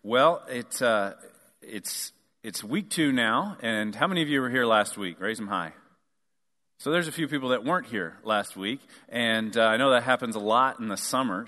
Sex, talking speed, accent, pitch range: male, 215 wpm, American, 105-140 Hz